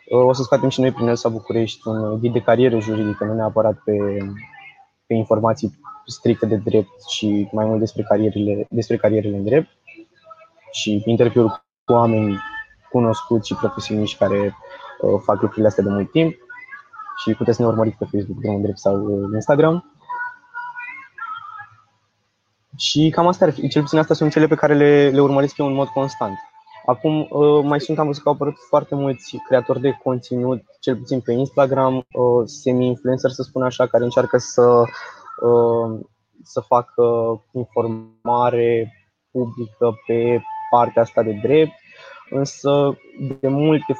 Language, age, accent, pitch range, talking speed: Romanian, 20-39, native, 110-140 Hz, 150 wpm